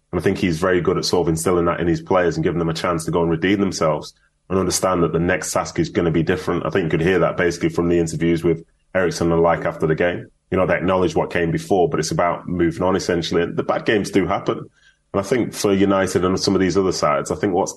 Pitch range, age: 80-90 Hz, 20-39